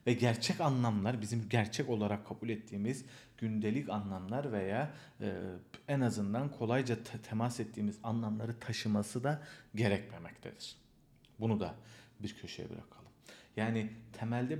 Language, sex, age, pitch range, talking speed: Turkish, male, 40-59, 105-145 Hz, 110 wpm